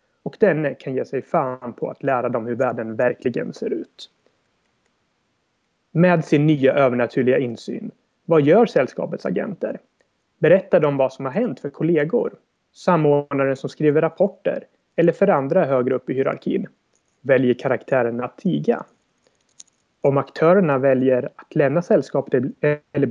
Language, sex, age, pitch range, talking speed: Swedish, male, 30-49, 125-155 Hz, 140 wpm